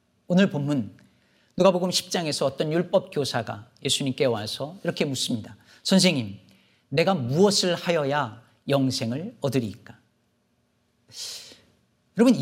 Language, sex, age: Korean, male, 40-59